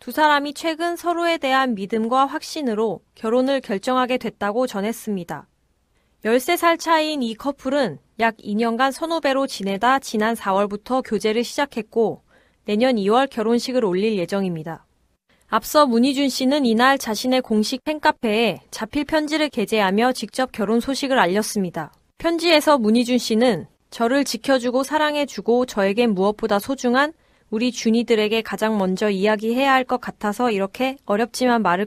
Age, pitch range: 20-39, 210-270 Hz